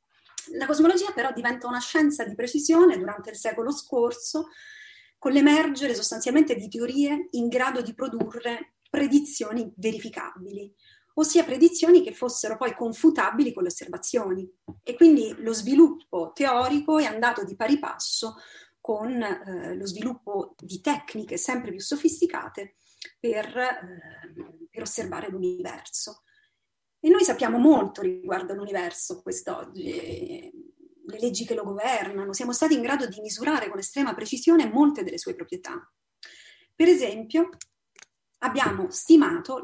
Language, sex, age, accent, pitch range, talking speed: Italian, female, 30-49, native, 225-330 Hz, 125 wpm